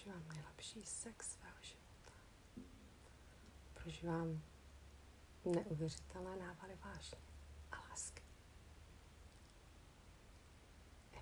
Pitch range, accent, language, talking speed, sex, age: 85-110 Hz, native, Czech, 65 wpm, female, 40-59